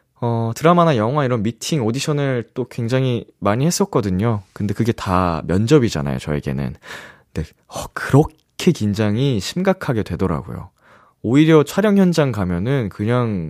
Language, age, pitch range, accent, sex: Korean, 20-39, 85-130 Hz, native, male